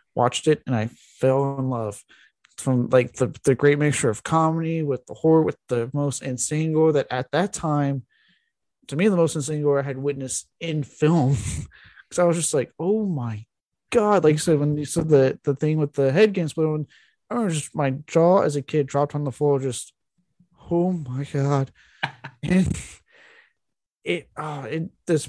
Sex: male